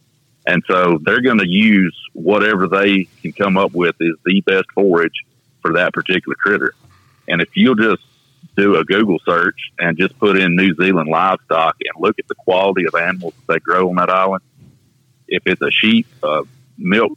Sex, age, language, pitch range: male, 50-69, English, 90-120 Hz